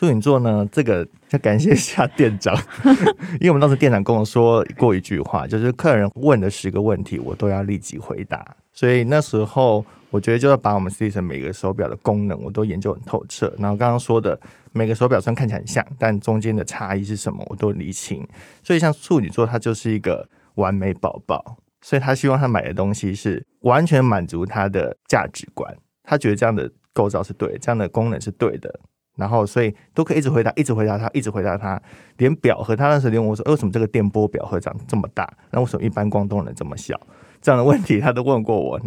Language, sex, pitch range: Chinese, male, 105-130 Hz